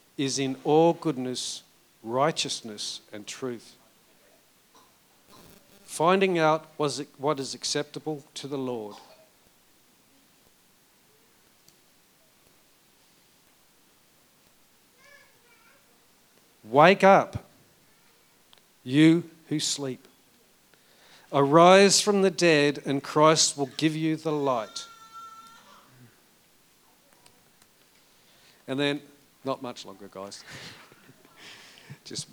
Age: 50-69